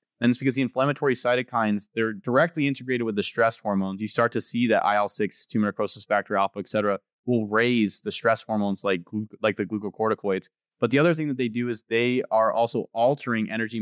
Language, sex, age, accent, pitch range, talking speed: English, male, 20-39, American, 105-125 Hz, 210 wpm